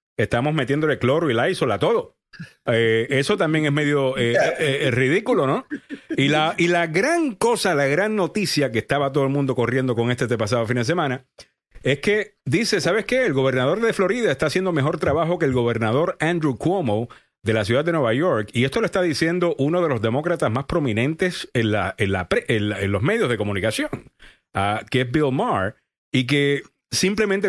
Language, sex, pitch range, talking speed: Spanish, male, 120-165 Hz, 205 wpm